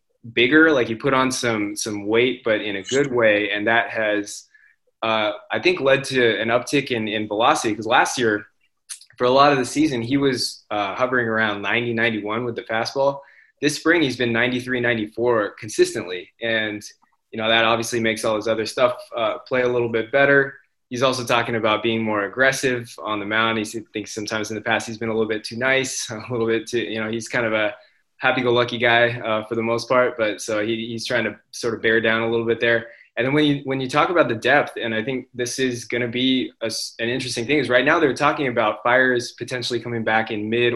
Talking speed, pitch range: 230 wpm, 110-130 Hz